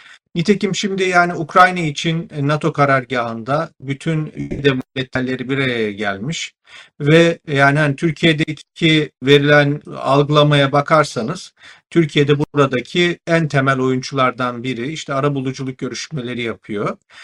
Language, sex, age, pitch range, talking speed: Turkish, male, 50-69, 130-170 Hz, 105 wpm